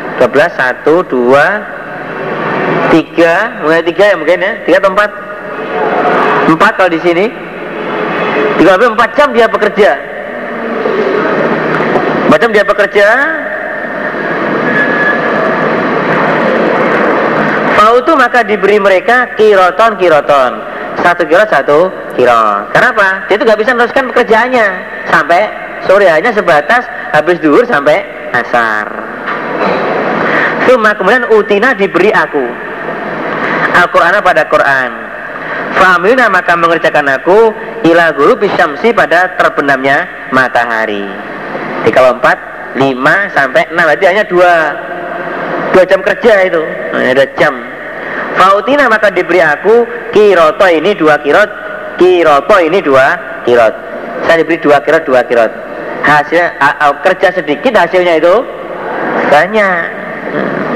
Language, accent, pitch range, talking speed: Indonesian, native, 165-225 Hz, 105 wpm